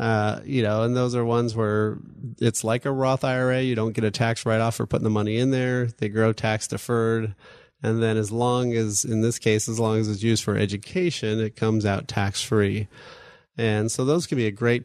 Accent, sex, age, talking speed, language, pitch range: American, male, 30-49, 220 wpm, English, 110-125 Hz